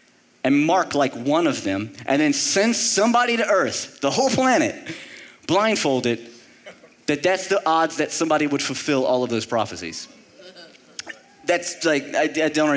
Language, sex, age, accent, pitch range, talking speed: English, male, 30-49, American, 130-195 Hz, 155 wpm